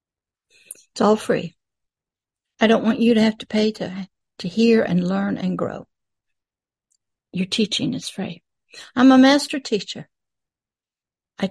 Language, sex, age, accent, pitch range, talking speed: English, female, 60-79, American, 195-240 Hz, 140 wpm